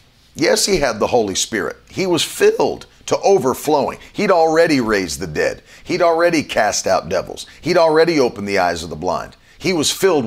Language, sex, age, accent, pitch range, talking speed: English, male, 40-59, American, 105-165 Hz, 185 wpm